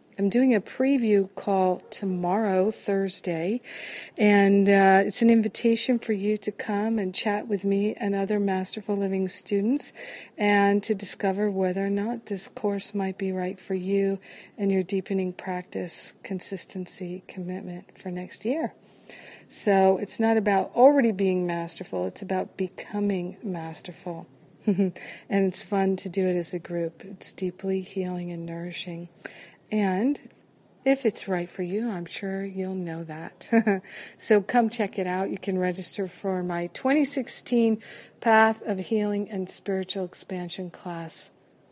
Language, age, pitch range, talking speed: English, 50-69, 185-210 Hz, 145 wpm